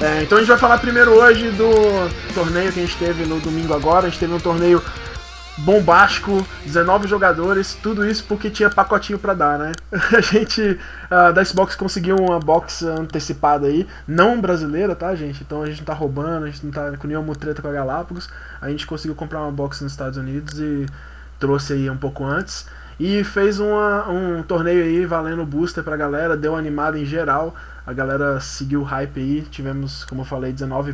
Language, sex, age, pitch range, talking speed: Portuguese, male, 20-39, 140-175 Hz, 200 wpm